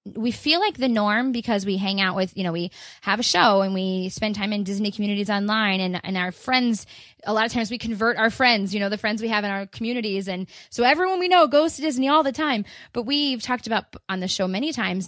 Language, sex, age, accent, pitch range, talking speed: English, female, 20-39, American, 185-230 Hz, 260 wpm